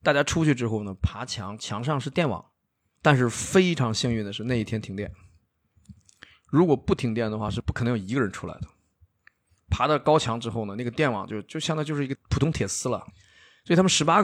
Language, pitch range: Chinese, 100-140 Hz